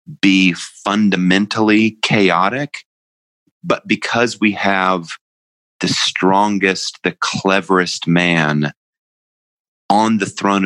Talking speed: 85 wpm